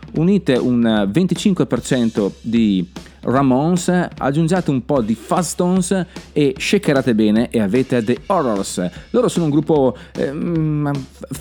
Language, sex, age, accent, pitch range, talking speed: Italian, male, 30-49, native, 115-165 Hz, 115 wpm